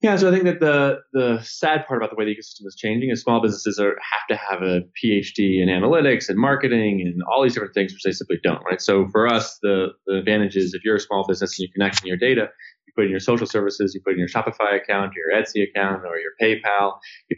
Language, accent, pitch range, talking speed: English, American, 95-115 Hz, 265 wpm